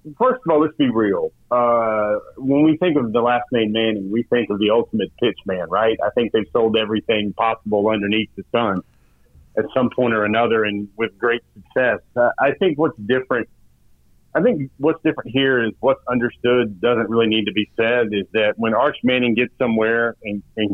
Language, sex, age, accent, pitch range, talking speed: English, male, 40-59, American, 105-125 Hz, 200 wpm